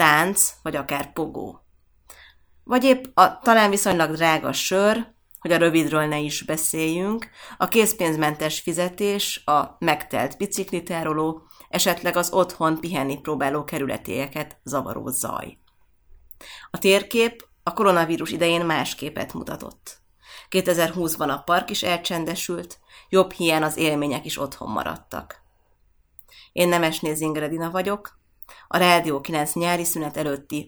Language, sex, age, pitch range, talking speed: Hungarian, female, 30-49, 150-185 Hz, 120 wpm